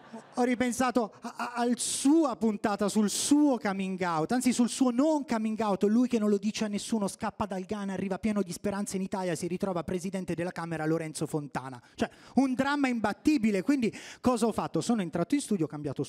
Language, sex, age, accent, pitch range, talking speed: Italian, male, 30-49, native, 155-205 Hz, 195 wpm